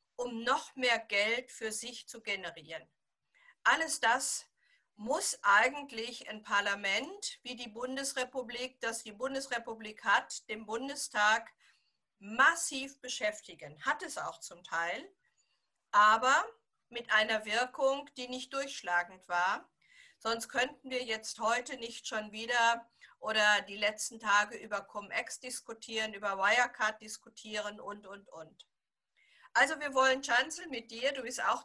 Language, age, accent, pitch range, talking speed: German, 50-69, German, 215-270 Hz, 130 wpm